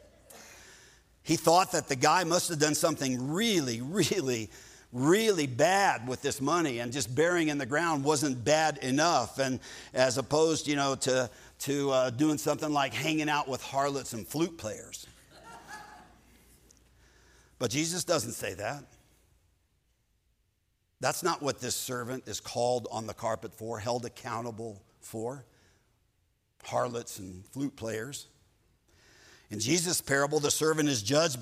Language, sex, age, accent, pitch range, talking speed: English, male, 50-69, American, 115-155 Hz, 140 wpm